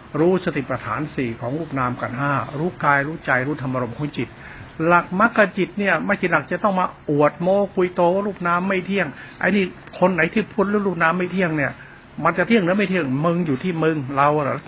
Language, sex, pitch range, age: Thai, male, 140-180 Hz, 60-79